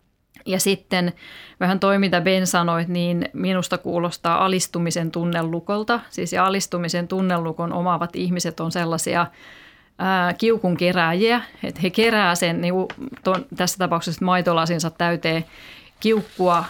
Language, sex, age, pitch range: Finnish, female, 30-49, 170-195 Hz